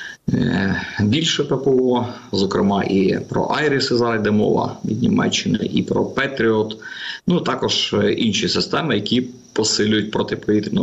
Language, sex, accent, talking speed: Ukrainian, male, native, 115 wpm